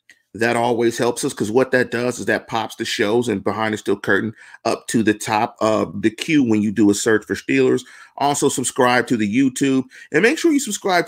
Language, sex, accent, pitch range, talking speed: English, male, American, 120-165 Hz, 230 wpm